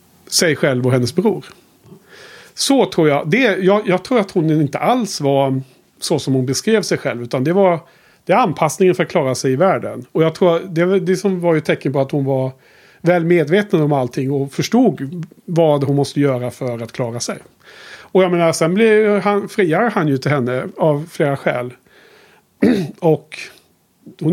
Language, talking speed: Swedish, 185 wpm